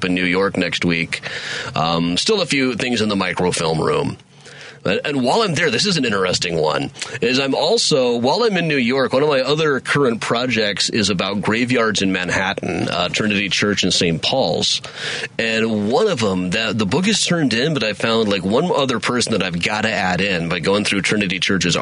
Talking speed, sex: 210 wpm, male